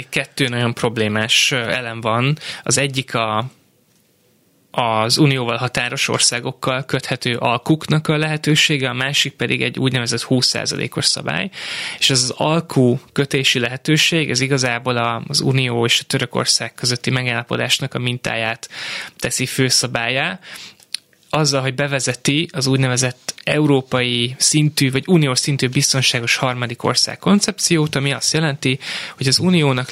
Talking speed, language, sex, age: 125 wpm, Hungarian, male, 20-39